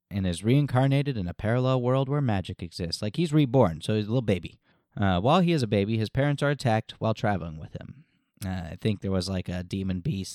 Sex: male